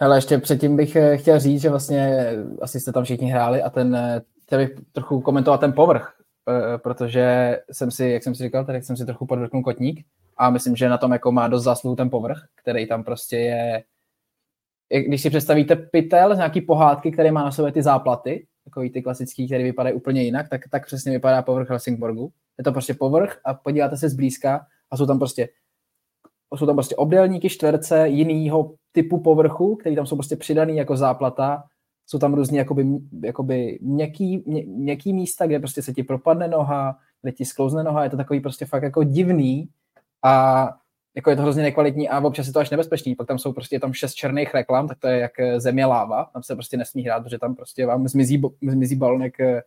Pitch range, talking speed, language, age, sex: 125-150 Hz, 195 wpm, Czech, 20-39, male